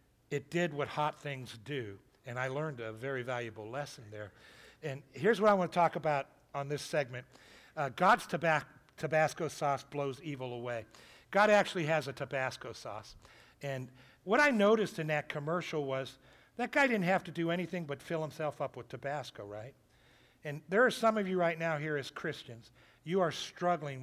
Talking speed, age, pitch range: 180 wpm, 60-79, 130-175 Hz